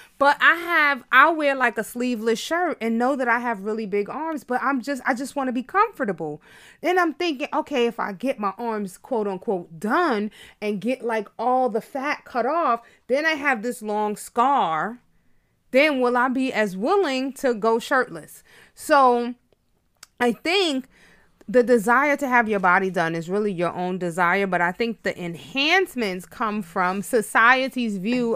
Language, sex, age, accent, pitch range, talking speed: English, female, 30-49, American, 190-255 Hz, 180 wpm